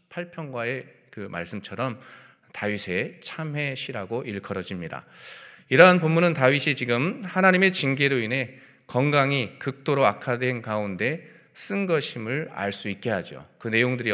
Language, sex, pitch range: Korean, male, 105-155 Hz